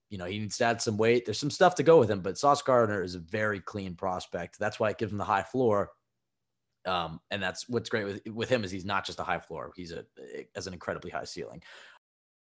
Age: 20-39